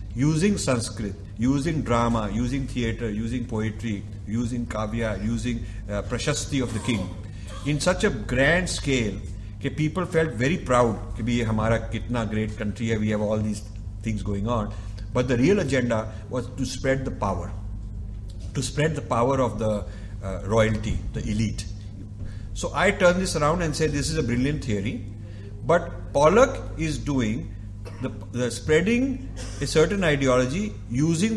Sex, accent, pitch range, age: male, Indian, 105-140 Hz, 50-69